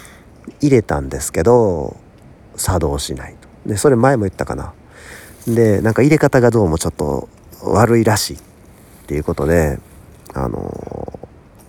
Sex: male